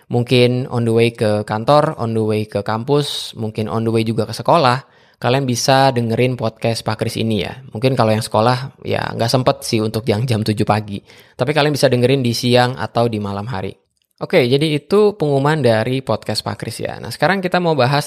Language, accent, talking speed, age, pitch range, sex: Indonesian, native, 210 wpm, 20-39, 110-135 Hz, male